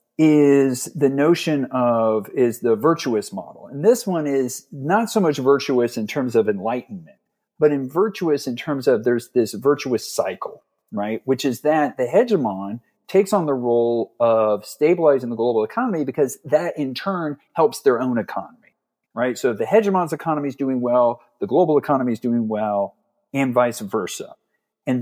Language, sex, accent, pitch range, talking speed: English, male, American, 115-165 Hz, 170 wpm